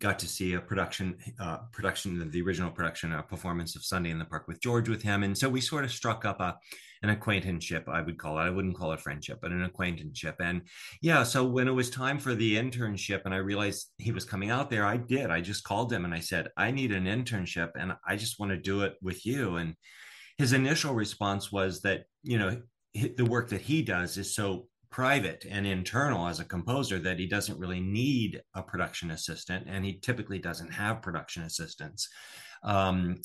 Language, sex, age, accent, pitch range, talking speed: English, male, 30-49, American, 90-115 Hz, 220 wpm